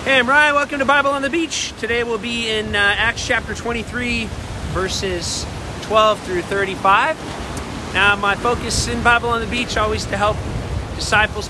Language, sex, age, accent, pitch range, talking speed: English, male, 40-59, American, 185-220 Hz, 170 wpm